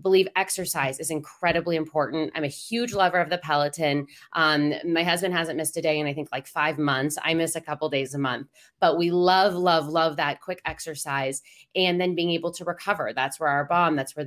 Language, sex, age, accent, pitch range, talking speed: English, female, 20-39, American, 150-185 Hz, 220 wpm